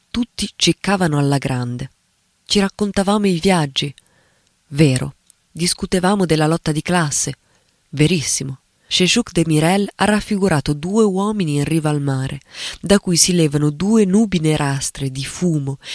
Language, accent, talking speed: Italian, native, 130 wpm